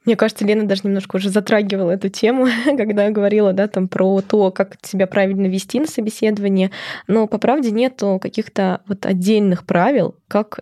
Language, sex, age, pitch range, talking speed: Russian, female, 20-39, 180-210 Hz, 175 wpm